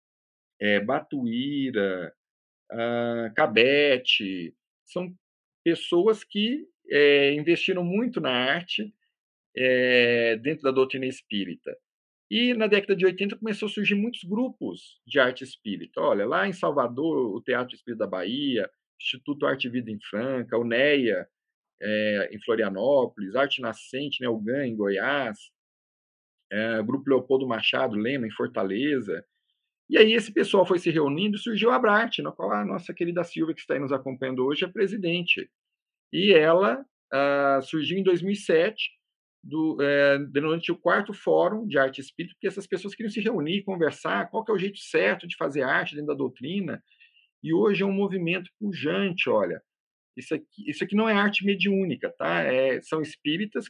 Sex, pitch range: male, 135-210 Hz